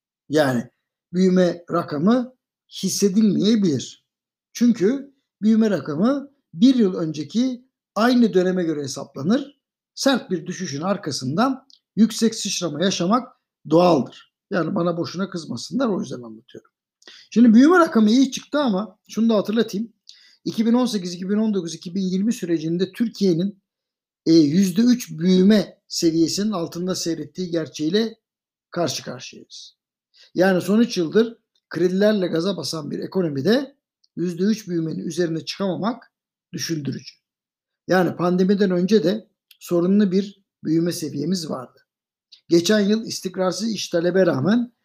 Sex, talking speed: male, 105 wpm